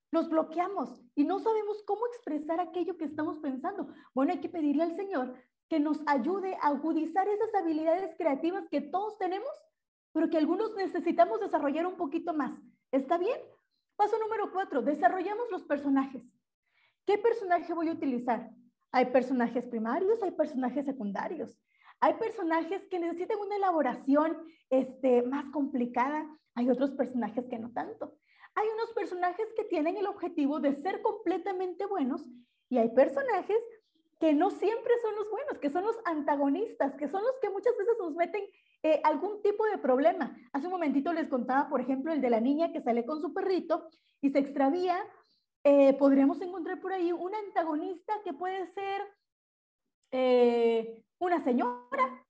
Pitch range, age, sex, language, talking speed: 275-375 Hz, 30-49, female, Spanish, 160 wpm